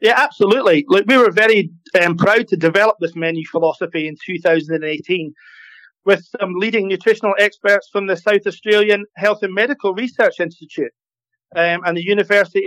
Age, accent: 30-49, British